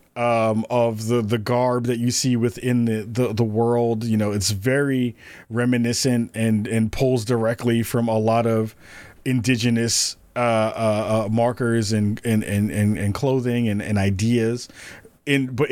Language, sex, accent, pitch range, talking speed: English, male, American, 115-135 Hz, 155 wpm